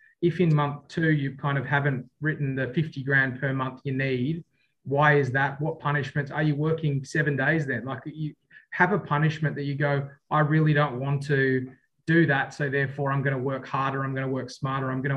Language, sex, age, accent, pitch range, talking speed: English, male, 20-39, Australian, 135-150 Hz, 220 wpm